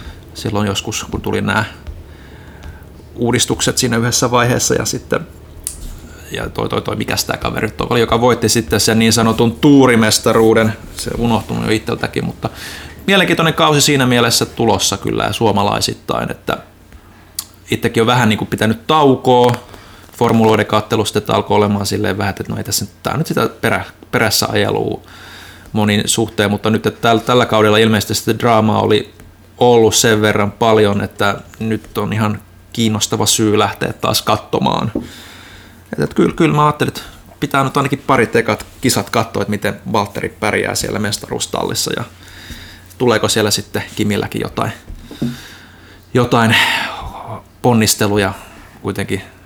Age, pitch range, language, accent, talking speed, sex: 30-49, 100-115 Hz, Finnish, native, 140 wpm, male